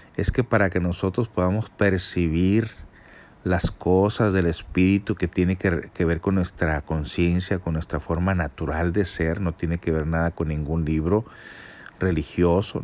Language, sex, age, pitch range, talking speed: Spanish, male, 50-69, 90-105 Hz, 155 wpm